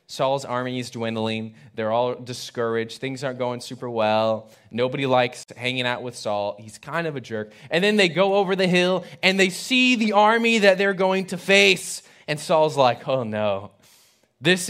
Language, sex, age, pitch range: English, male, 20-39, 120-180 Hz